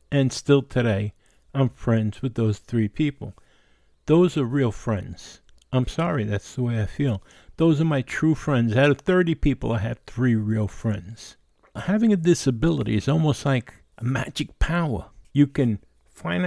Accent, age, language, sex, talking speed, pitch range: American, 60-79, English, male, 170 wpm, 115-170 Hz